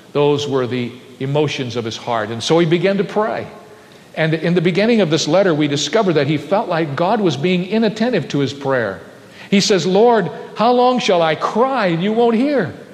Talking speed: 210 wpm